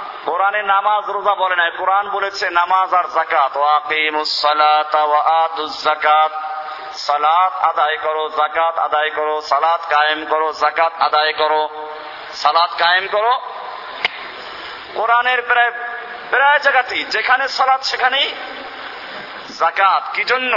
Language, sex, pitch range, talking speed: Bengali, male, 170-225 Hz, 35 wpm